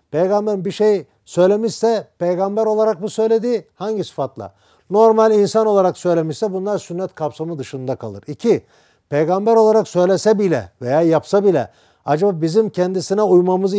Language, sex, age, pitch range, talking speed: Turkish, male, 50-69, 155-200 Hz, 135 wpm